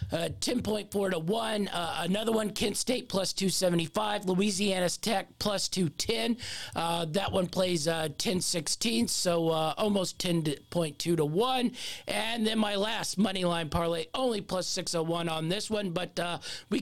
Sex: male